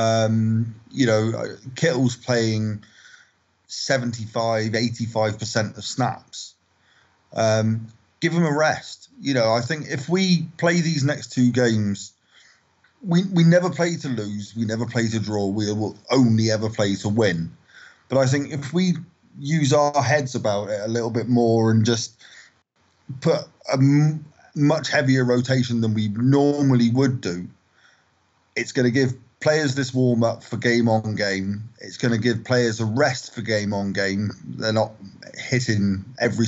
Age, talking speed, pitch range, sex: 30-49, 160 wpm, 105-135 Hz, male